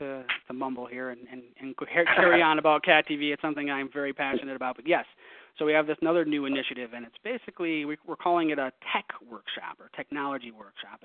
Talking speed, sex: 215 wpm, male